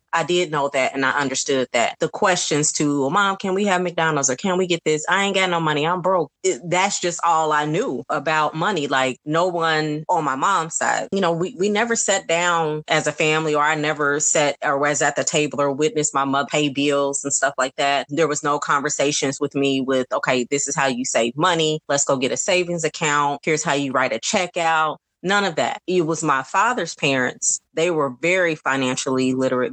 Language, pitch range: English, 140-170 Hz